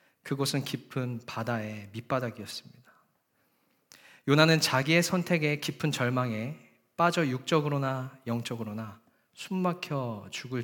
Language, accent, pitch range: Korean, native, 120-155 Hz